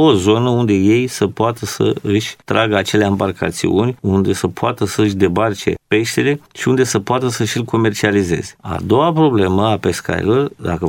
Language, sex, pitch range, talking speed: Romanian, male, 100-130 Hz, 170 wpm